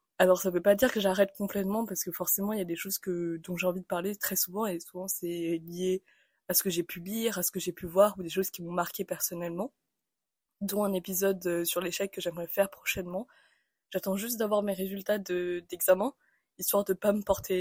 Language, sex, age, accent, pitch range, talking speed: French, female, 20-39, French, 175-205 Hz, 230 wpm